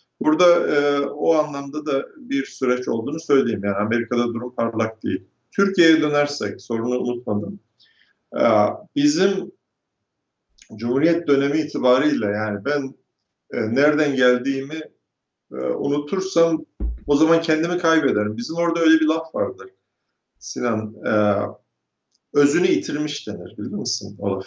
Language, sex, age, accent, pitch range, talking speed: Turkish, male, 50-69, native, 120-165 Hz, 115 wpm